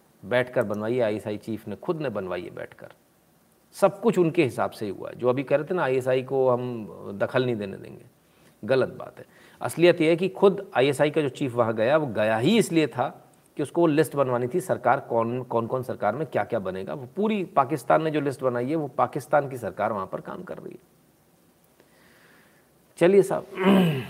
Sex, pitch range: male, 135-185 Hz